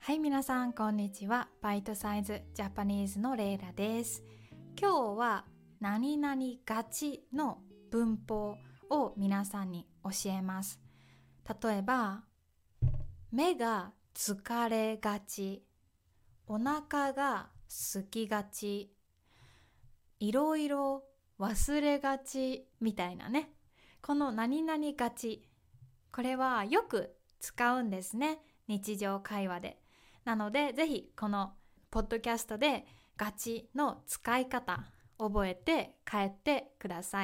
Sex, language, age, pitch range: female, Japanese, 20-39, 200-275 Hz